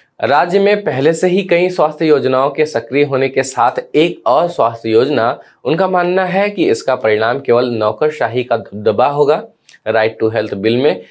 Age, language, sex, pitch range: 20-39, Hindi, male, 115-155 Hz